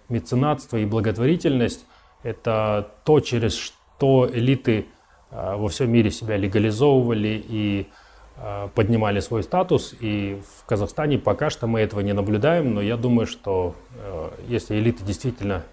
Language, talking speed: Russian, 125 wpm